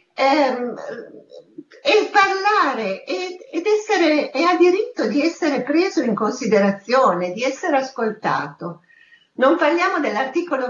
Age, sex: 50-69, female